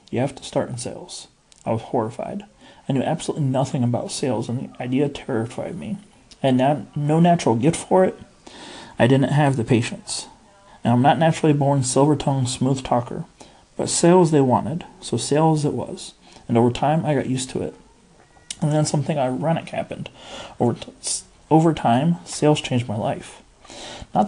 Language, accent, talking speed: English, American, 170 wpm